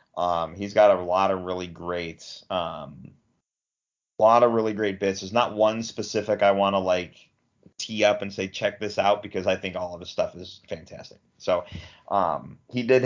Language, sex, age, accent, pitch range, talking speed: English, male, 30-49, American, 95-125 Hz, 195 wpm